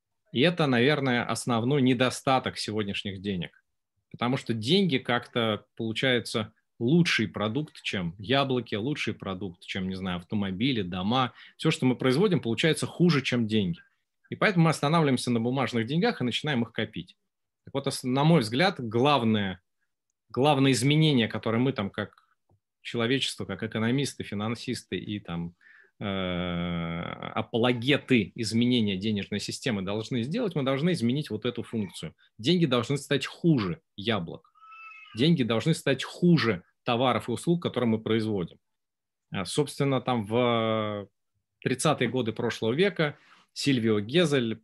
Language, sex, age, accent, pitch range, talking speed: Russian, male, 30-49, native, 105-140 Hz, 130 wpm